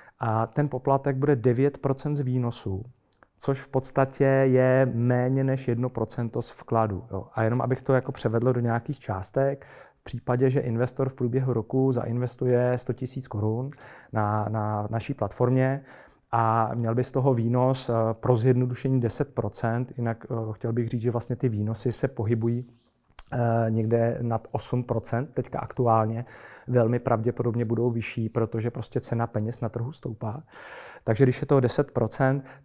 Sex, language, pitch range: male, Czech, 115-130 Hz